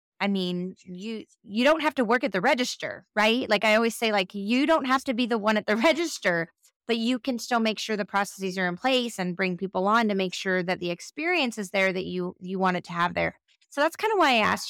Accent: American